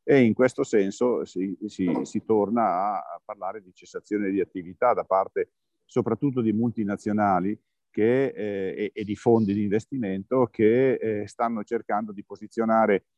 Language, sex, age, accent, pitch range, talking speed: Italian, male, 50-69, native, 105-150 Hz, 135 wpm